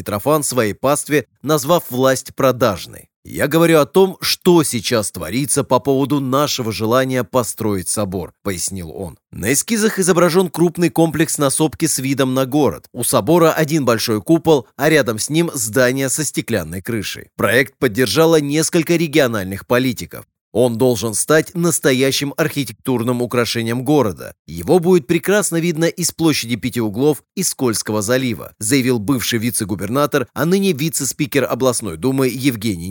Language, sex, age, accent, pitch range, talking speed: Russian, male, 30-49, native, 120-155 Hz, 145 wpm